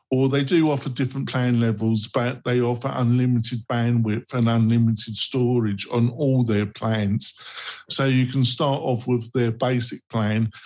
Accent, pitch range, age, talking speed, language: British, 110-125 Hz, 50-69, 160 wpm, English